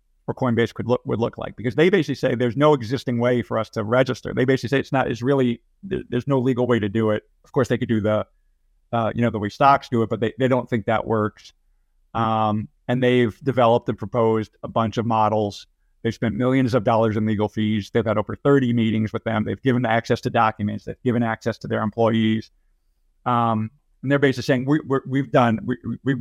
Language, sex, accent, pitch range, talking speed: English, male, American, 110-125 Hz, 230 wpm